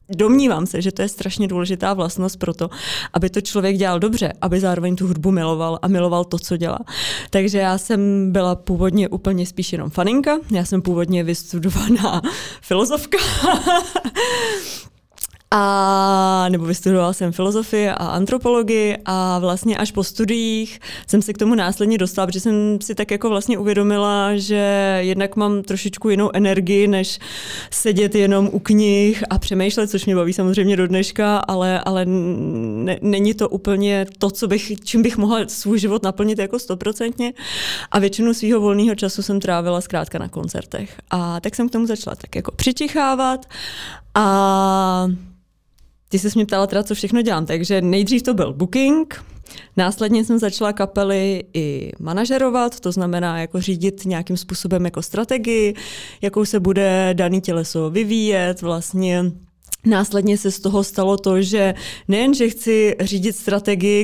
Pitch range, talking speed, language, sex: 185-210 Hz, 155 wpm, Czech, female